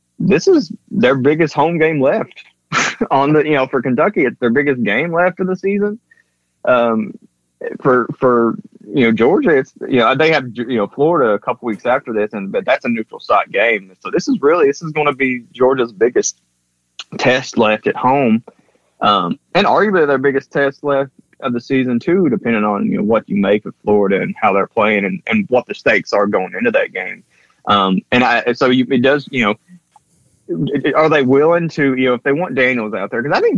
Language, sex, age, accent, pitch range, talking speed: English, male, 20-39, American, 105-155 Hz, 215 wpm